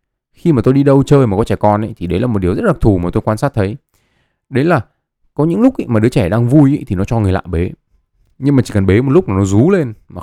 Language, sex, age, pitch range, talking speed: Vietnamese, male, 20-39, 95-135 Hz, 315 wpm